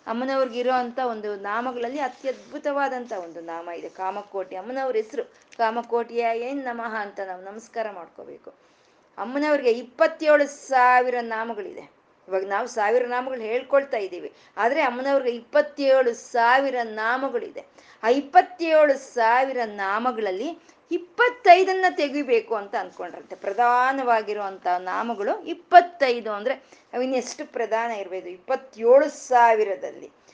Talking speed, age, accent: 90 wpm, 20-39, native